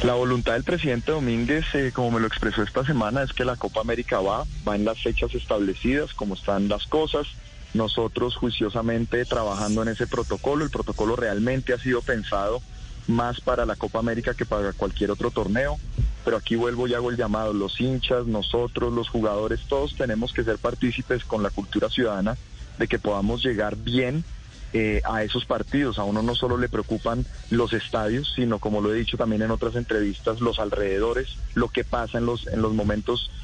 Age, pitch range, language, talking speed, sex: 30-49, 110-125 Hz, Spanish, 190 wpm, male